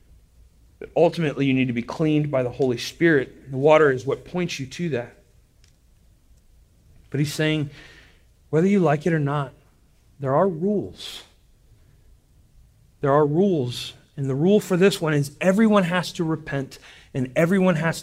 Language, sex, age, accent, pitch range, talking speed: English, male, 40-59, American, 115-160 Hz, 160 wpm